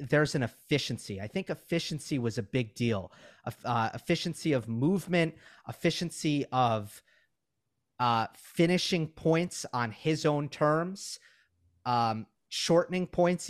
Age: 30-49